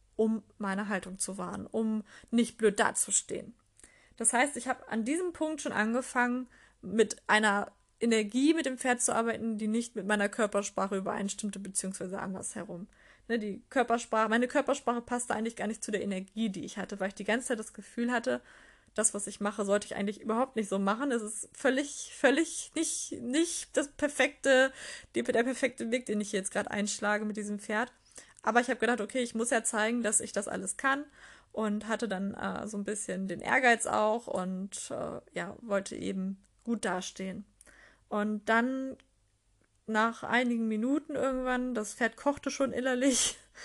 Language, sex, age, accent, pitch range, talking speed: German, female, 20-39, German, 210-250 Hz, 175 wpm